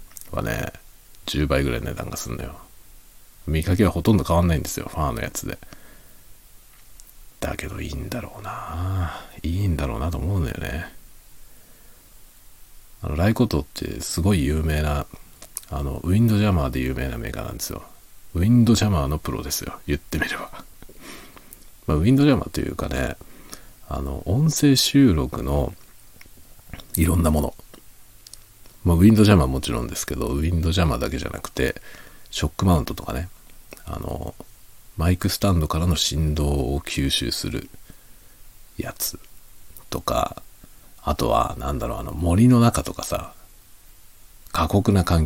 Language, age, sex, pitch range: Japanese, 40-59, male, 80-105 Hz